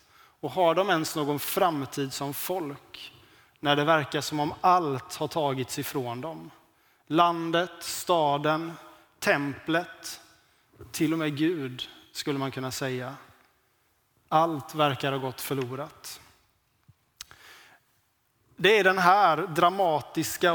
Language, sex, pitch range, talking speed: Swedish, male, 140-160 Hz, 115 wpm